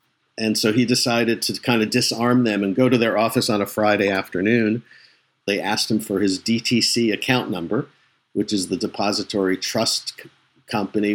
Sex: male